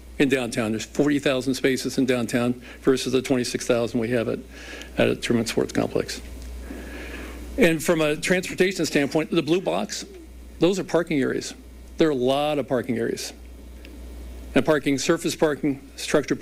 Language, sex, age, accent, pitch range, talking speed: English, male, 50-69, American, 120-150 Hz, 155 wpm